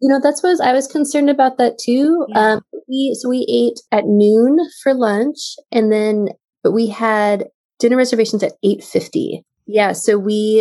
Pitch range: 185-230 Hz